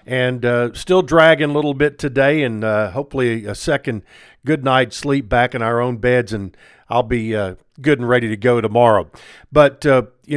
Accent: American